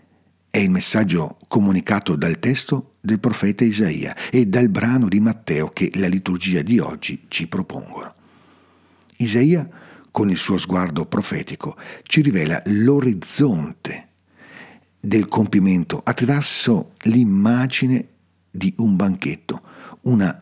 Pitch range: 95-135 Hz